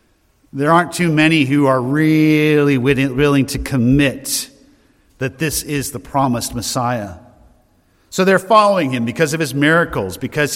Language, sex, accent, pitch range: English, male, American, 130-180 Hz